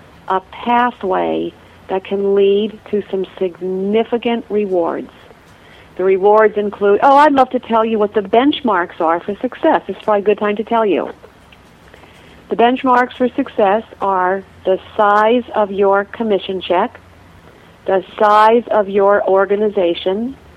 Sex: female